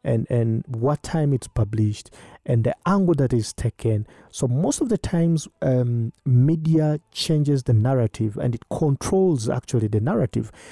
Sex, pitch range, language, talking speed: male, 115-140 Hz, English, 155 wpm